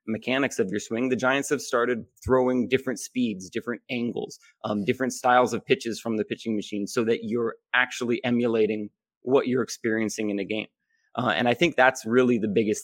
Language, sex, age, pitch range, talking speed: English, male, 30-49, 105-120 Hz, 190 wpm